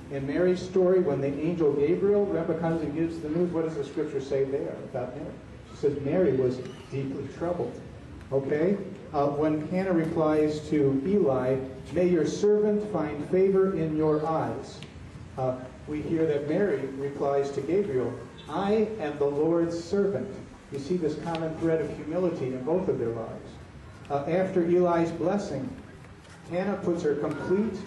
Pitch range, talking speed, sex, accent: 130-170 Hz, 160 wpm, male, American